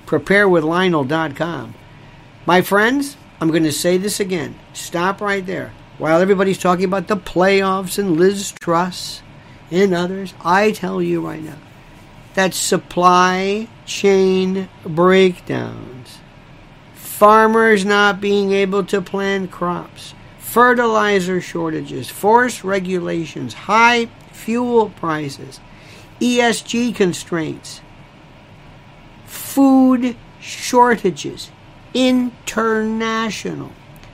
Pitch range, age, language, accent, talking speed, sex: 155-215 Hz, 50-69, English, American, 95 wpm, male